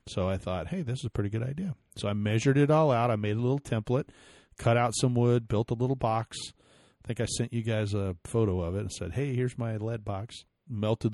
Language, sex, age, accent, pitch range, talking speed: English, male, 40-59, American, 100-120 Hz, 255 wpm